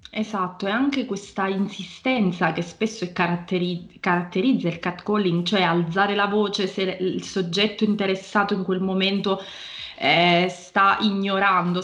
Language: Italian